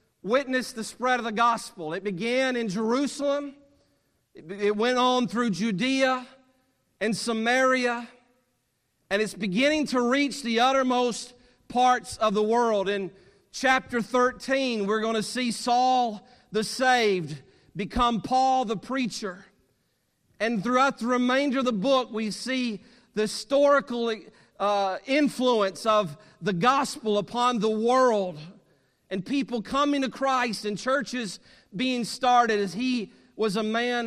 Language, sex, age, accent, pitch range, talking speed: English, male, 50-69, American, 205-250 Hz, 130 wpm